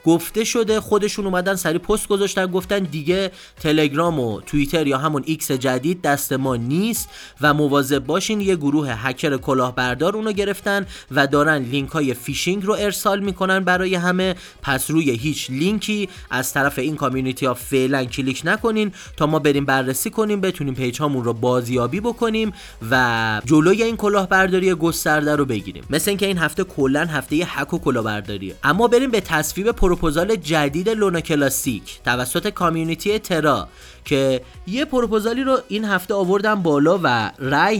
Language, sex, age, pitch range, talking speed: Persian, male, 30-49, 135-195 Hz, 155 wpm